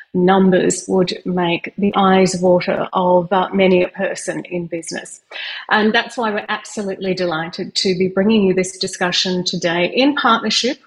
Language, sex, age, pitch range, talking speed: English, female, 30-49, 185-225 Hz, 155 wpm